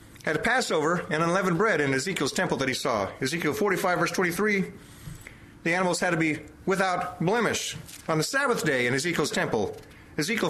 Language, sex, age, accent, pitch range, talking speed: English, male, 40-59, American, 155-210 Hz, 175 wpm